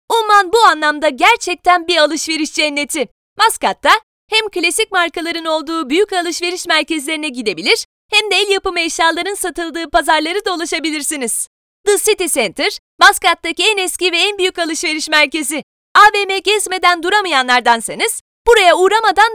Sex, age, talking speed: female, 30-49, 125 wpm